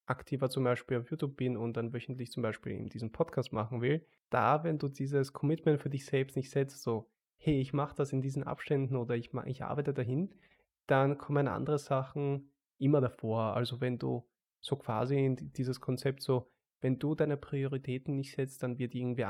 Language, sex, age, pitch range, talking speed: German, male, 20-39, 120-140 Hz, 195 wpm